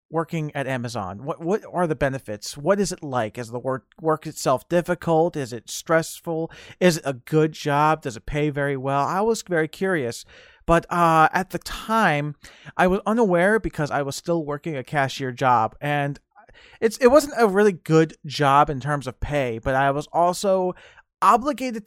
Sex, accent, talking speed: male, American, 185 wpm